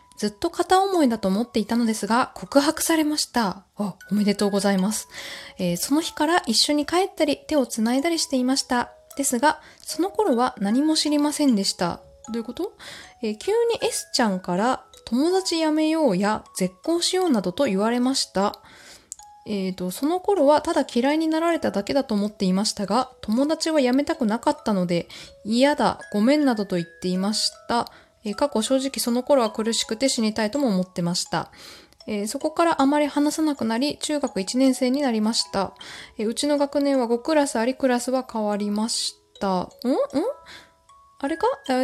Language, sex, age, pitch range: Japanese, female, 20-39, 210-295 Hz